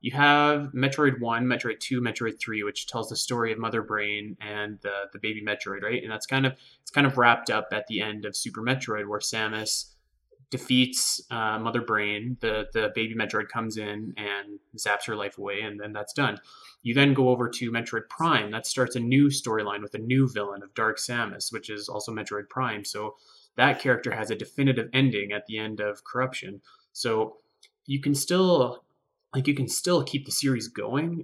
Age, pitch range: 20-39, 105-130 Hz